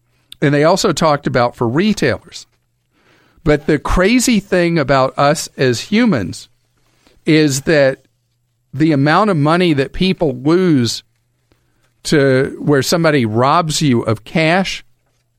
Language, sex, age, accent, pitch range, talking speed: English, male, 50-69, American, 120-165 Hz, 120 wpm